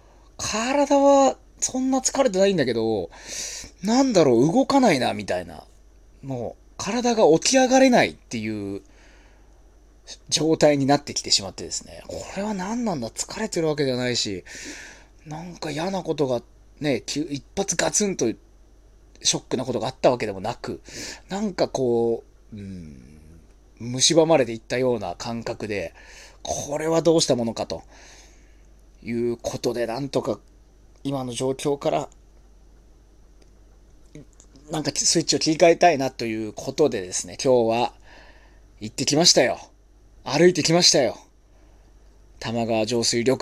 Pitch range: 110-160 Hz